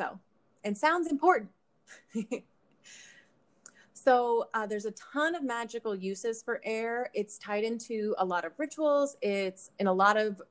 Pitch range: 185-230 Hz